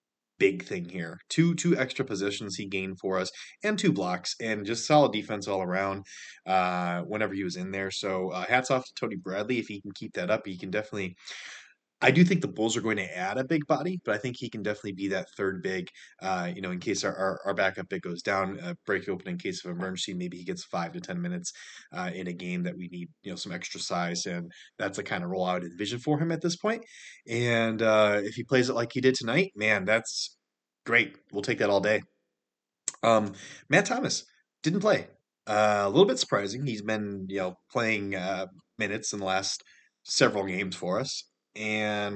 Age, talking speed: 20-39, 225 wpm